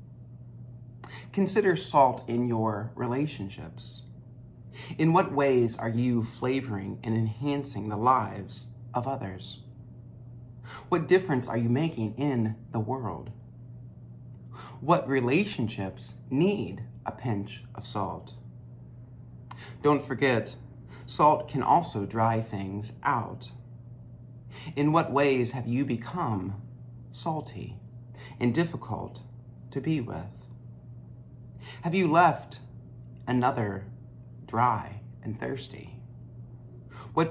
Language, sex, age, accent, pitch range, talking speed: English, male, 40-59, American, 115-130 Hz, 95 wpm